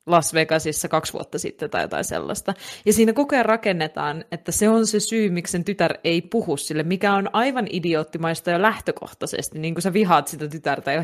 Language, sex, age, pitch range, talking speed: Finnish, female, 20-39, 175-225 Hz, 200 wpm